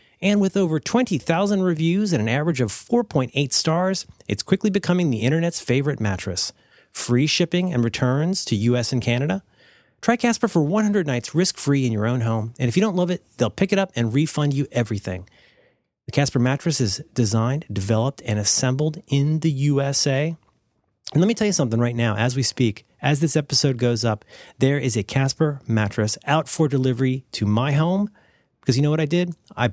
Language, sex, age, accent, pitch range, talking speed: English, male, 30-49, American, 120-170 Hz, 190 wpm